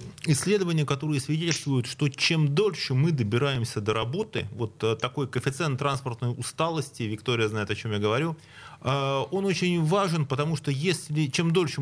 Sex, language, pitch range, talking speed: male, Russian, 125-155 Hz, 145 wpm